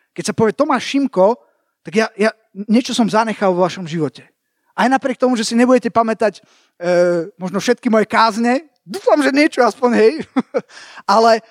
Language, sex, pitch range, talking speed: Slovak, male, 180-260 Hz, 165 wpm